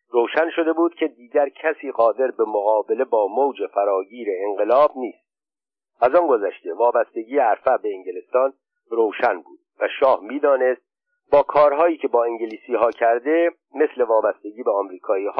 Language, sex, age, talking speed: Persian, male, 50-69, 145 wpm